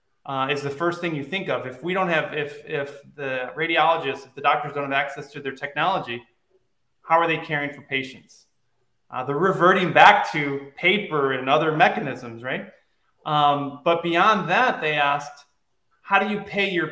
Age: 30-49